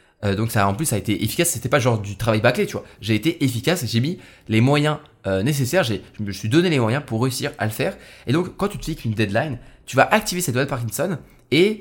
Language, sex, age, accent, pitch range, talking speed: French, male, 20-39, French, 115-150 Hz, 285 wpm